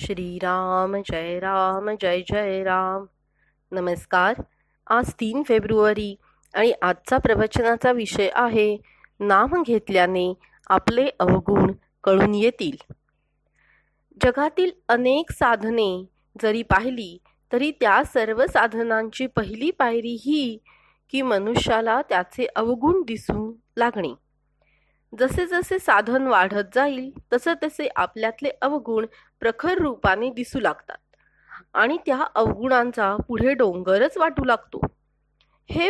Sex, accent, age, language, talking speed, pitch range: female, native, 30-49, Marathi, 100 wpm, 215-285 Hz